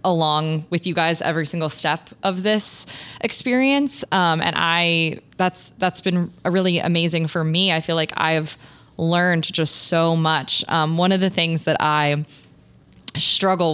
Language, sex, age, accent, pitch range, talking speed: English, female, 20-39, American, 150-180 Hz, 160 wpm